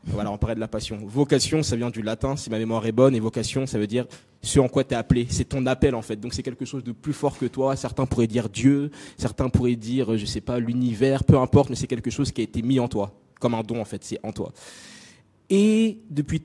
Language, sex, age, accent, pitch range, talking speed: French, male, 20-39, French, 115-140 Hz, 275 wpm